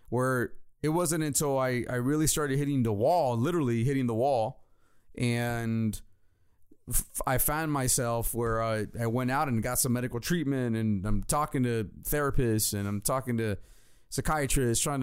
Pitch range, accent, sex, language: 115-155 Hz, American, male, English